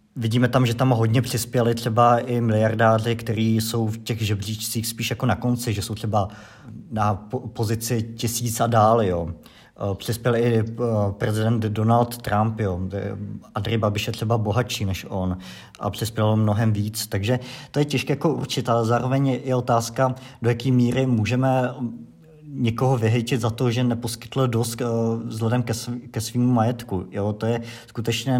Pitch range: 105-120 Hz